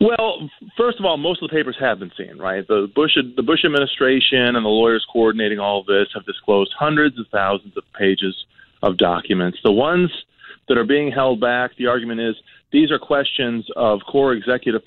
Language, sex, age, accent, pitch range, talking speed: English, male, 30-49, American, 105-140 Hz, 195 wpm